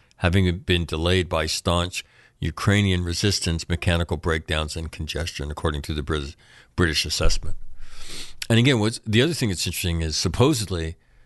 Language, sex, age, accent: English, male, 60-79, American